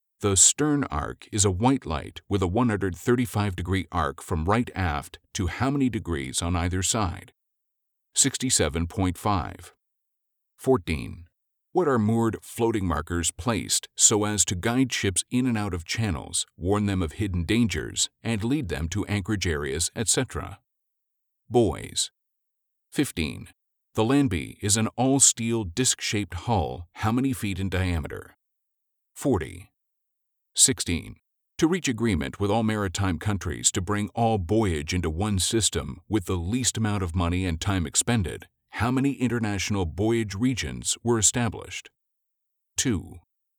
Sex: male